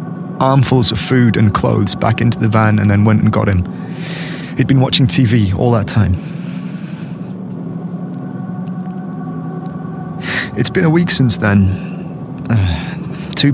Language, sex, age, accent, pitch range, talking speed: English, male, 30-49, British, 105-160 Hz, 135 wpm